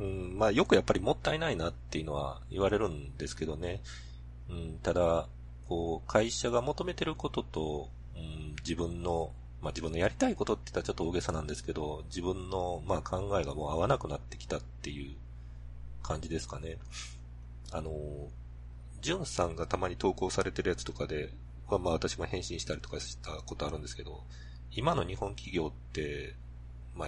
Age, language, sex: 40-59, Japanese, male